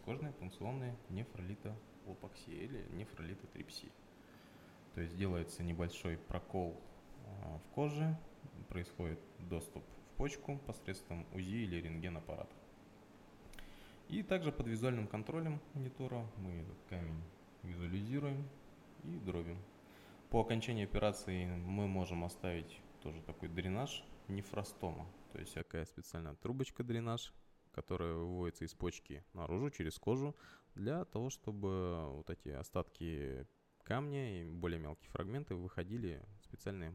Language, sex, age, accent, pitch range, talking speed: Russian, male, 20-39, native, 85-115 Hz, 110 wpm